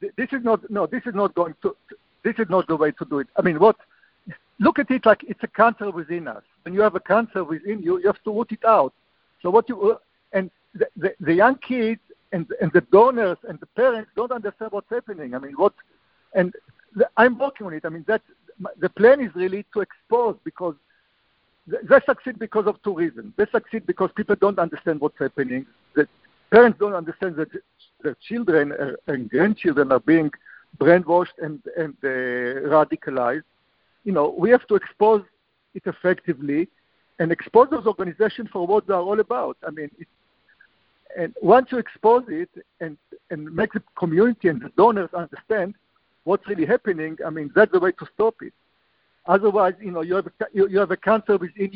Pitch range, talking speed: 170-225 Hz, 195 wpm